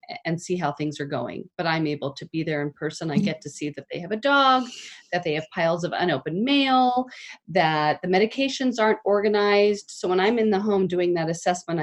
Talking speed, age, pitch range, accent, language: 225 wpm, 40-59, 165-205 Hz, American, English